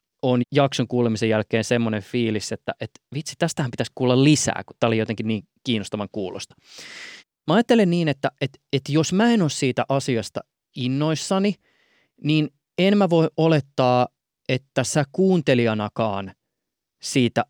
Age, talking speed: 20-39, 145 wpm